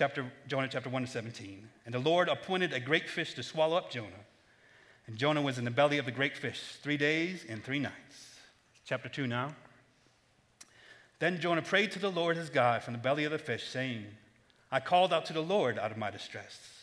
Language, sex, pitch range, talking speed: English, male, 120-150 Hz, 210 wpm